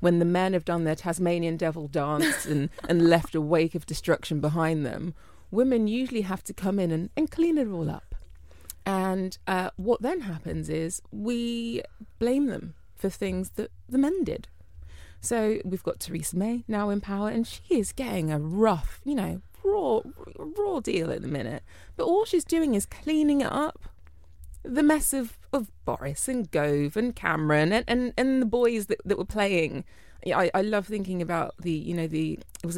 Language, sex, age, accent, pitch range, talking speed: English, female, 20-39, British, 160-230 Hz, 190 wpm